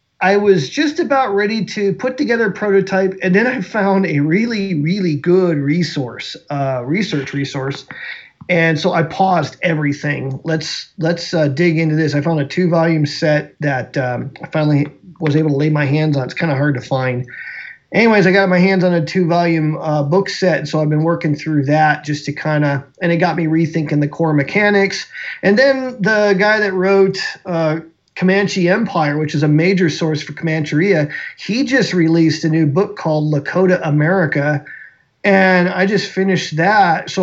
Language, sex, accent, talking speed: English, male, American, 190 wpm